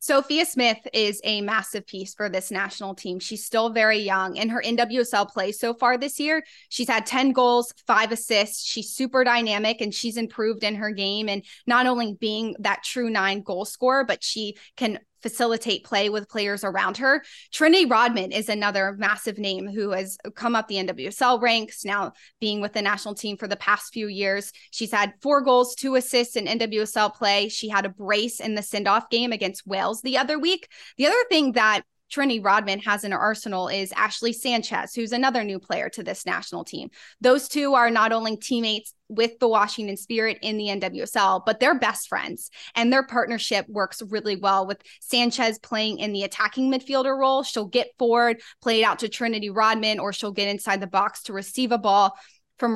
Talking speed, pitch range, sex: 195 wpm, 205-240 Hz, female